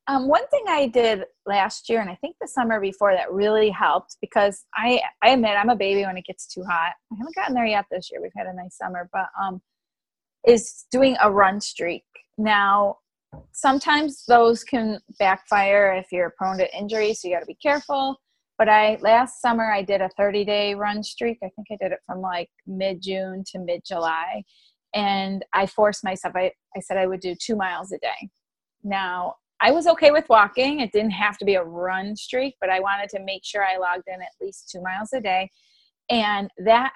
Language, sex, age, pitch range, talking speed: English, female, 20-39, 190-230 Hz, 210 wpm